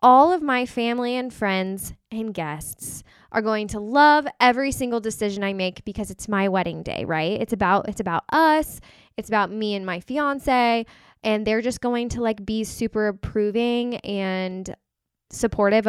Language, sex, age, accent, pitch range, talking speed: English, female, 10-29, American, 190-250 Hz, 170 wpm